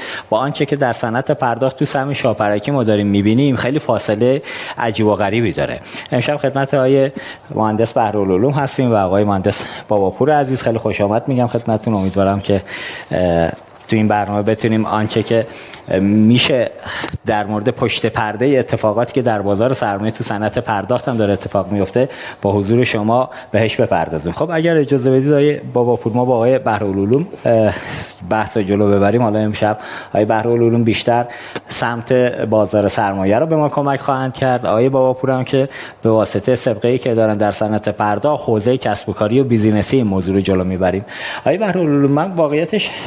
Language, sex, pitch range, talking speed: Persian, male, 105-135 Hz, 165 wpm